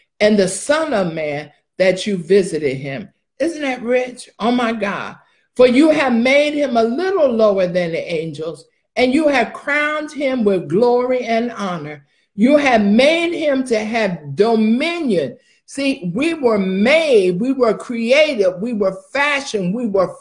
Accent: American